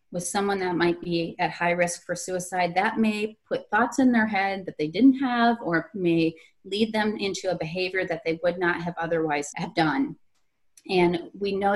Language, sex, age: English, female, 30-49